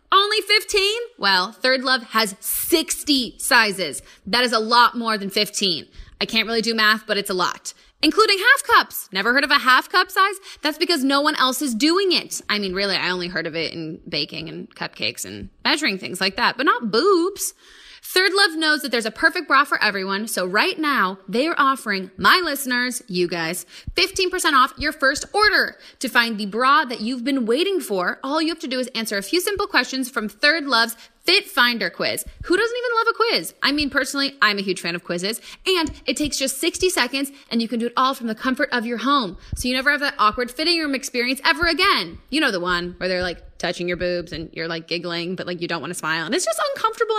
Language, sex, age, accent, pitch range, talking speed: English, female, 20-39, American, 205-330 Hz, 230 wpm